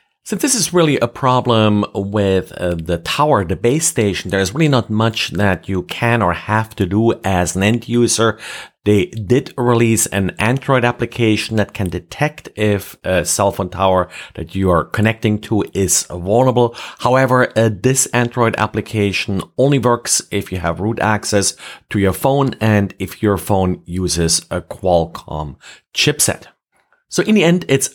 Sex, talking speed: male, 165 wpm